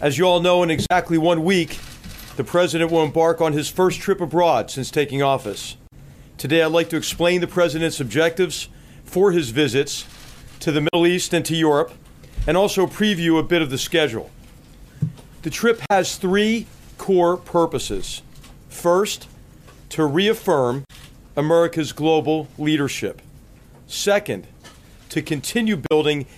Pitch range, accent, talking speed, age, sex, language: 145-180 Hz, American, 140 wpm, 40-59, male, English